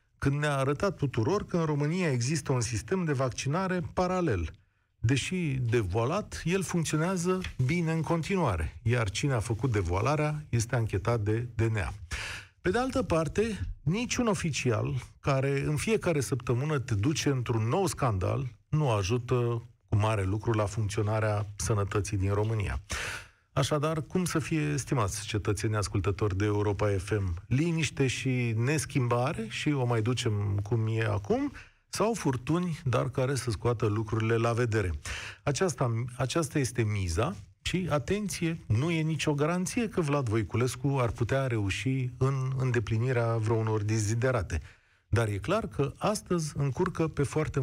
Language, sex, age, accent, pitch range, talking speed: Romanian, male, 40-59, native, 110-150 Hz, 140 wpm